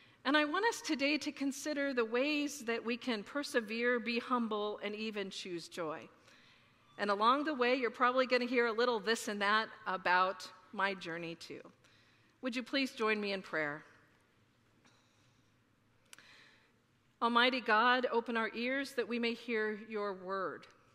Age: 50-69